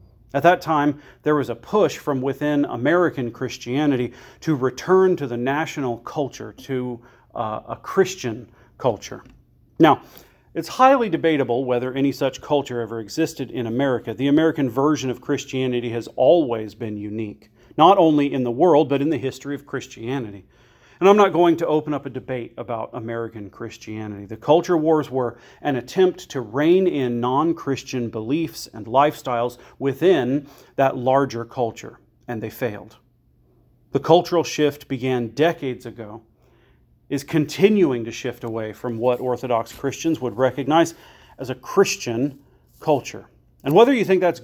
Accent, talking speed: American, 150 wpm